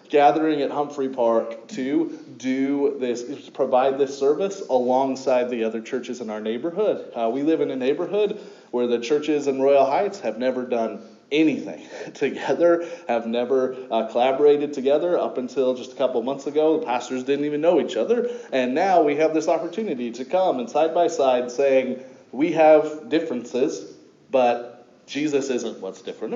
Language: English